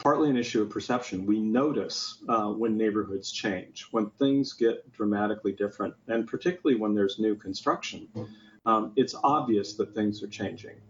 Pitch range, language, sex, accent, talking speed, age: 100-115 Hz, English, male, American, 160 wpm, 40-59